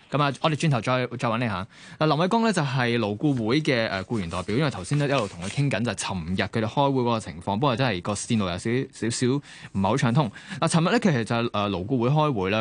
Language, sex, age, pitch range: Chinese, male, 20-39, 100-130 Hz